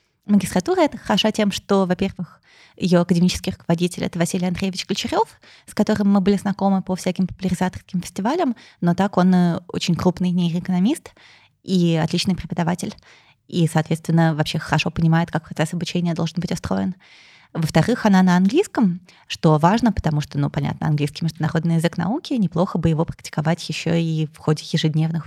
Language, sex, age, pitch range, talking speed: Russian, female, 20-39, 165-200 Hz, 155 wpm